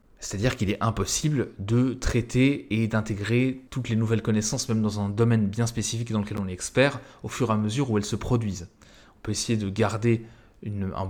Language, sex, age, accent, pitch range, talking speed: French, male, 20-39, French, 110-130 Hz, 205 wpm